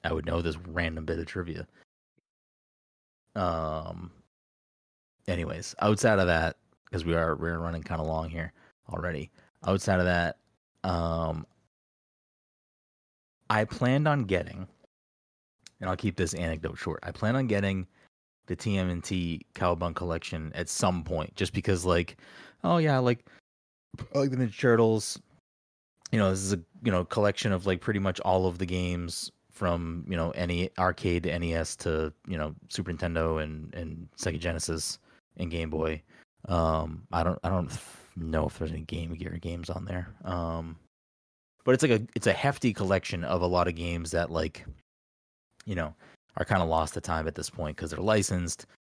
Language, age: English, 20-39